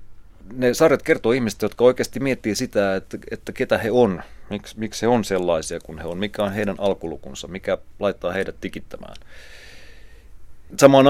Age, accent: 30-49, native